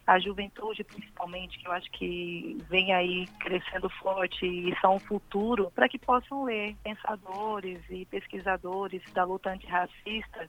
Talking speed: 145 wpm